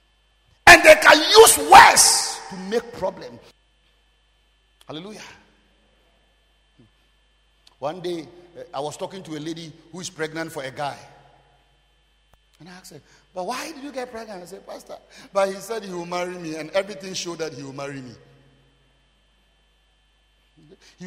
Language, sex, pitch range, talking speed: English, male, 135-195 Hz, 145 wpm